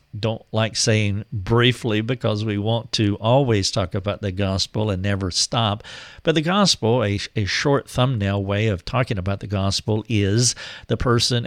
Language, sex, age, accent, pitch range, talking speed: English, male, 50-69, American, 100-125 Hz, 165 wpm